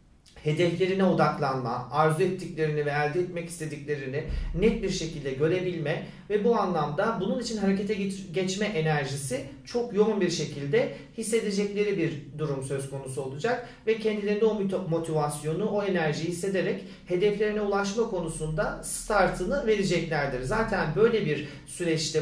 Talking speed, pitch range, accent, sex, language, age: 125 wpm, 145-205 Hz, native, male, Turkish, 40-59